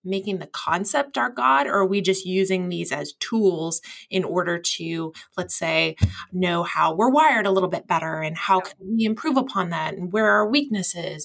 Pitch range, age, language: 165-195 Hz, 20-39, English